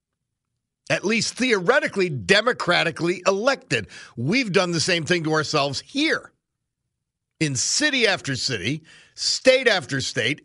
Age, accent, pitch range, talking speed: 50-69, American, 130-175 Hz, 115 wpm